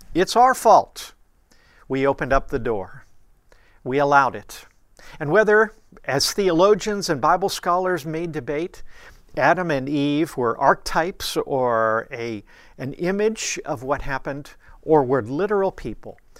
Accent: American